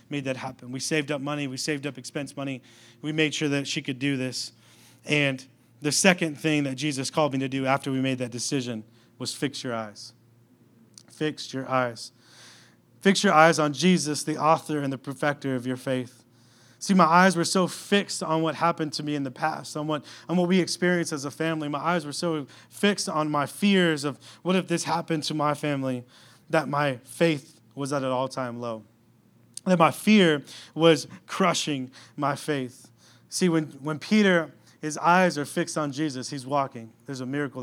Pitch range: 125-155 Hz